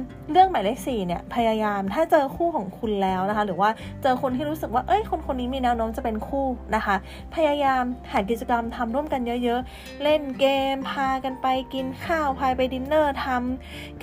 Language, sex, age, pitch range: Thai, female, 20-39, 220-290 Hz